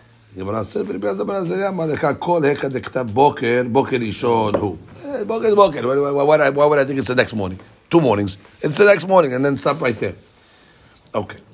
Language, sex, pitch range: English, male, 105-130 Hz